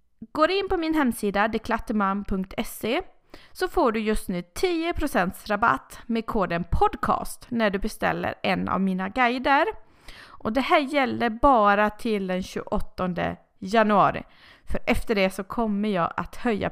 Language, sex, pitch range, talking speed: Swedish, female, 195-270 Hz, 145 wpm